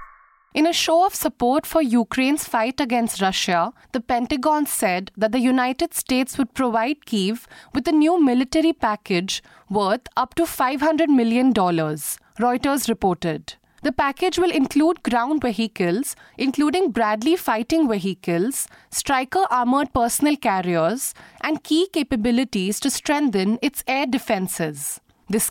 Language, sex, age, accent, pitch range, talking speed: English, female, 30-49, Indian, 215-300 Hz, 125 wpm